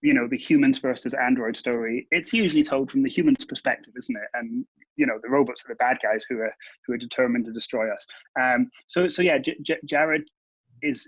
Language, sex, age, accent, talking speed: English, male, 30-49, British, 220 wpm